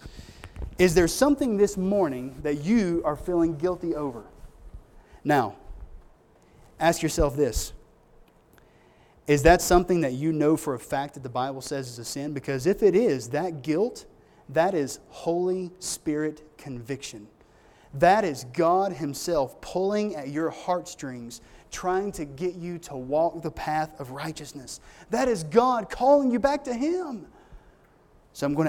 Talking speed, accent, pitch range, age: 150 wpm, American, 135-175 Hz, 30-49